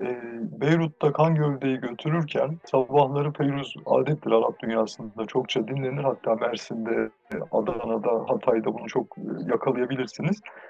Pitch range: 130-165 Hz